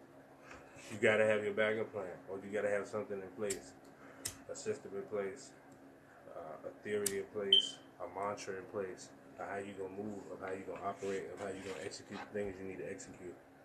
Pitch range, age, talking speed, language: 90-105 Hz, 20-39, 230 wpm, English